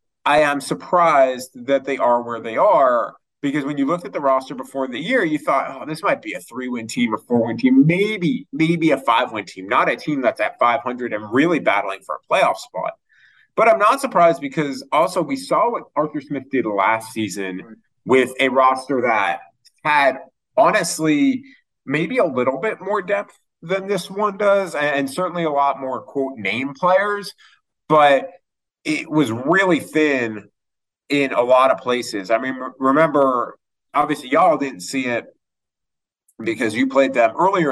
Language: English